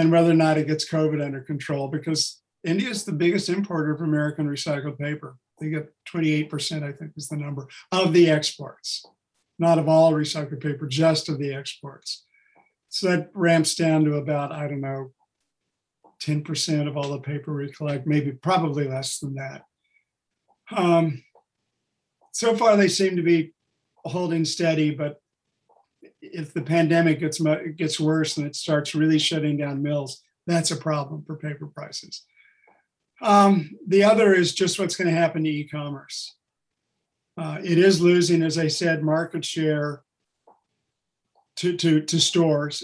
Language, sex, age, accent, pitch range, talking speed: English, male, 50-69, American, 150-170 Hz, 160 wpm